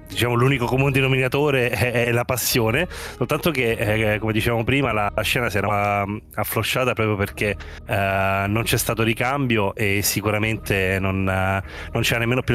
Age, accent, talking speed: 30-49, native, 160 wpm